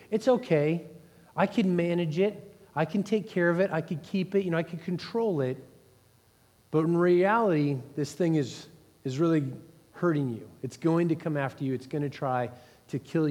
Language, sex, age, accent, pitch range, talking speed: English, male, 30-49, American, 140-180 Hz, 200 wpm